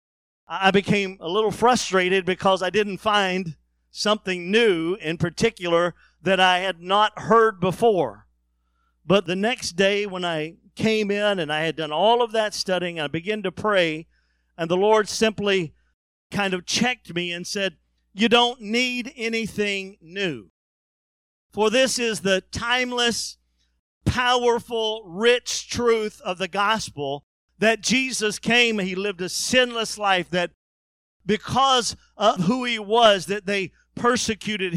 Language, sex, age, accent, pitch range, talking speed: English, male, 50-69, American, 170-225 Hz, 145 wpm